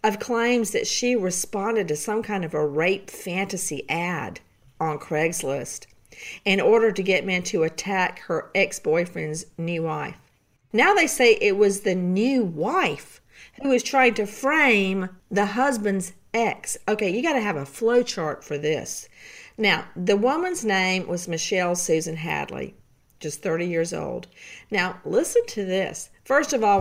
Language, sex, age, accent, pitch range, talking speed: English, female, 50-69, American, 170-235 Hz, 160 wpm